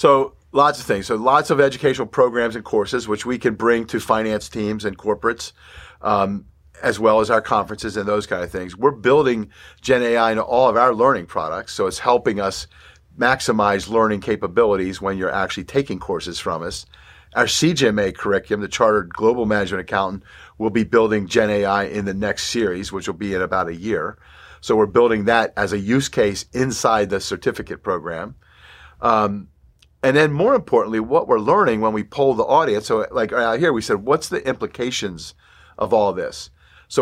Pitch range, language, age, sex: 95-120 Hz, English, 50-69, male